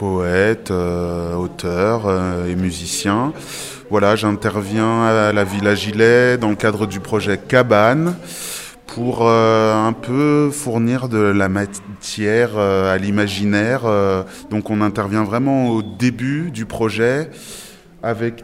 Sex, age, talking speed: male, 20-39, 125 wpm